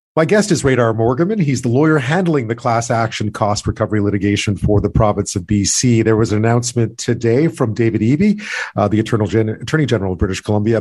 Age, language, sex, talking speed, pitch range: 40-59, English, male, 195 wpm, 105-130 Hz